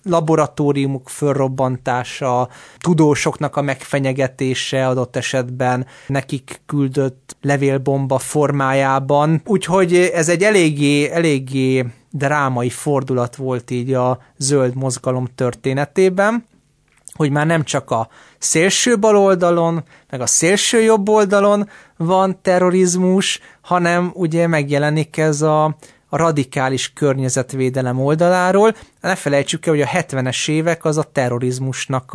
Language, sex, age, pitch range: Hungarian, male, 30-49, 130-160 Hz